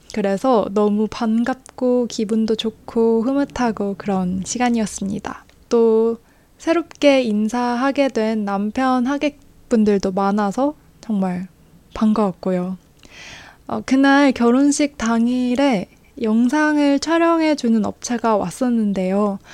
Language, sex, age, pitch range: Korean, female, 20-39, 210-255 Hz